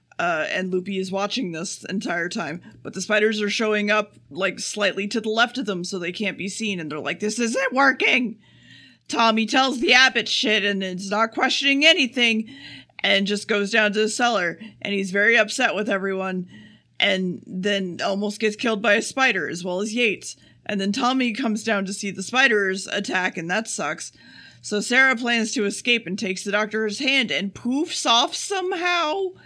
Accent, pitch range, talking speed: American, 195-240 Hz, 195 wpm